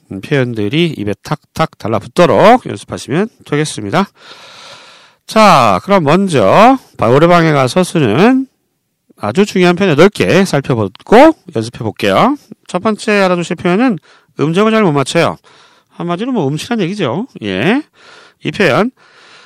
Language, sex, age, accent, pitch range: Korean, male, 40-59, native, 140-230 Hz